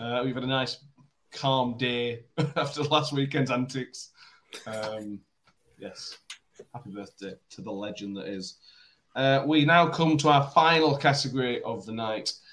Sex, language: male, English